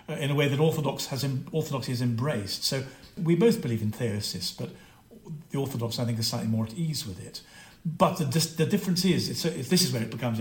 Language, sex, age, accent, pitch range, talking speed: English, male, 50-69, British, 120-160 Hz, 220 wpm